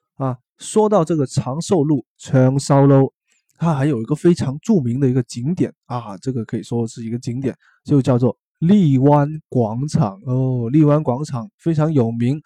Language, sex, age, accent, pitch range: Chinese, male, 20-39, native, 125-160 Hz